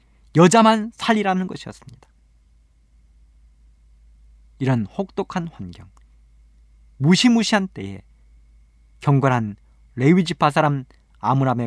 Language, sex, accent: Korean, male, native